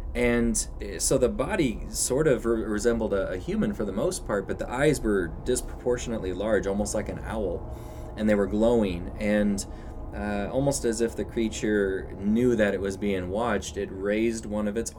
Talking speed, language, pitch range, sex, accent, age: 185 wpm, English, 95-115 Hz, male, American, 20-39